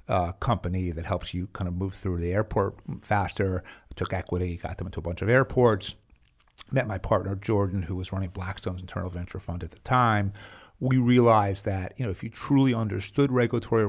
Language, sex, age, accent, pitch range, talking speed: Hebrew, male, 50-69, American, 90-105 Hz, 200 wpm